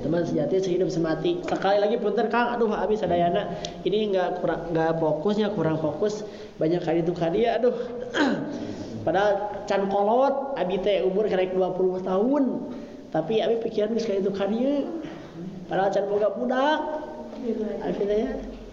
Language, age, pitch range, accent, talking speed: Indonesian, 20-39, 170-225 Hz, native, 140 wpm